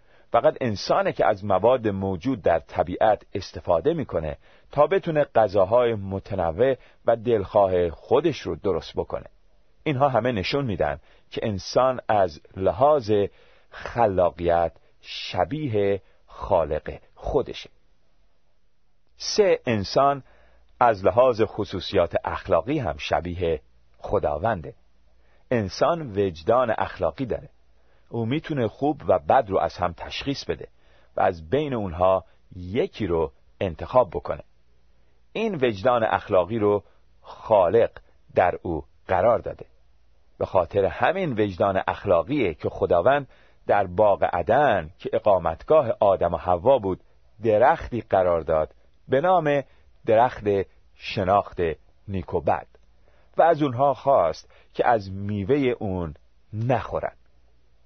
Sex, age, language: male, 40-59, Persian